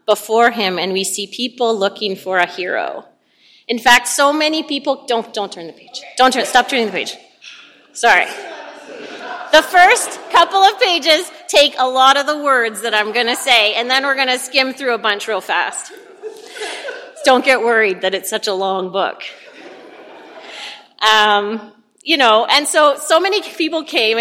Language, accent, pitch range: English, American, 215-310 Hz